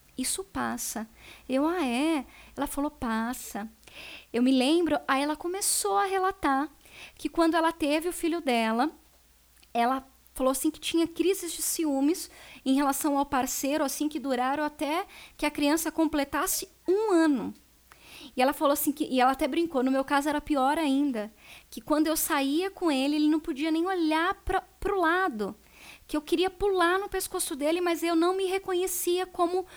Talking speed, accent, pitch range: 175 wpm, Brazilian, 265-340 Hz